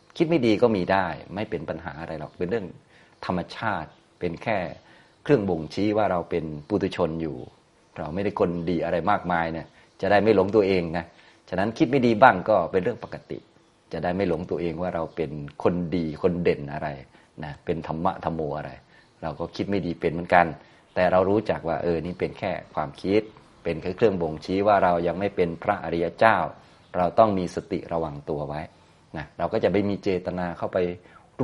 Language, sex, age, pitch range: Thai, male, 30-49, 80-95 Hz